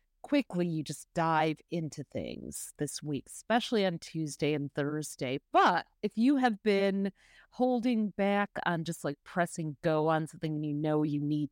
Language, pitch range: English, 155-205 Hz